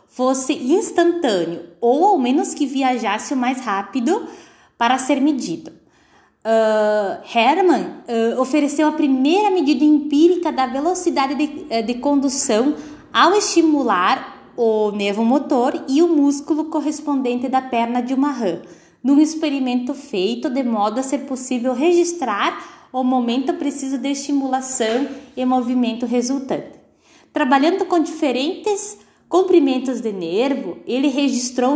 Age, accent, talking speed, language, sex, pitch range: 20-39, Brazilian, 125 wpm, Portuguese, female, 245-315 Hz